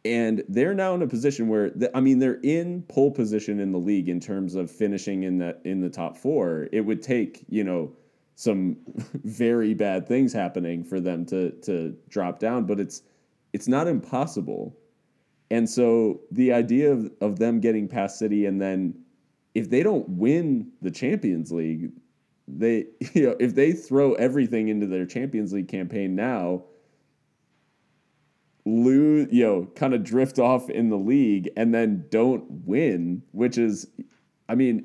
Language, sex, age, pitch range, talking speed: English, male, 30-49, 95-125 Hz, 170 wpm